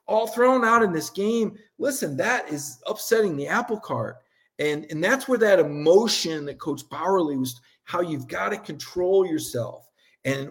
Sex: male